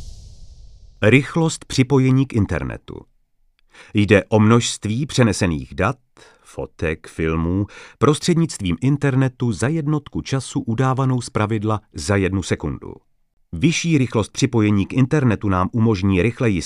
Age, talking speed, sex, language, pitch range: 40-59, 105 wpm, male, Czech, 95-125 Hz